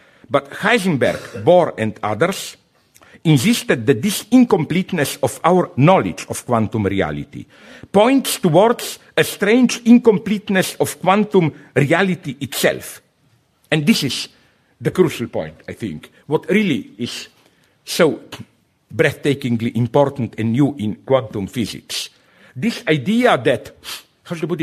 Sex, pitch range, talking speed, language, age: male, 135-210 Hz, 120 wpm, English, 50-69